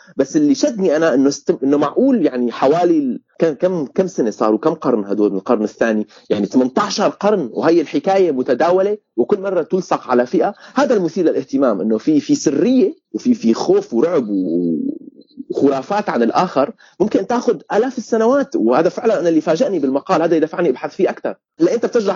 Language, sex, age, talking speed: Arabic, male, 30-49, 170 wpm